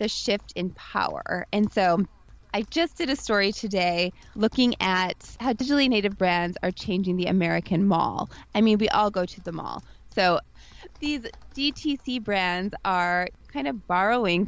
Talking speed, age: 160 wpm, 20-39